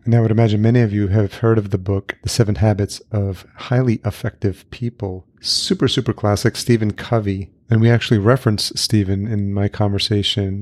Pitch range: 100-115 Hz